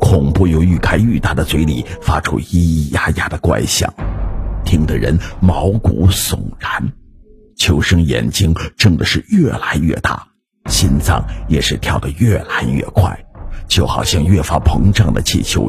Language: Chinese